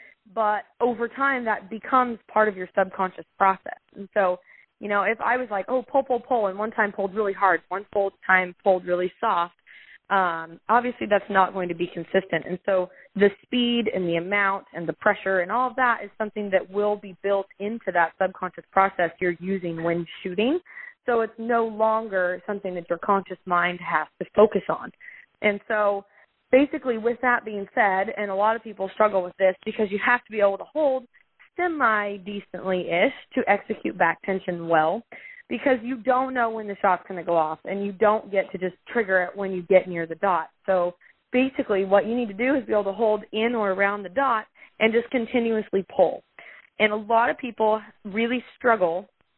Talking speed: 200 wpm